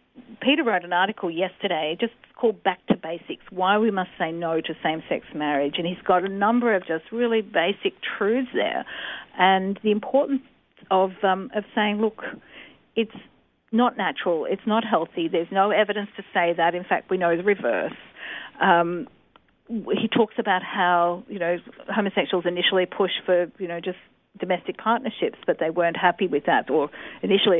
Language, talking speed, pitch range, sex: English, 170 wpm, 170-220 Hz, female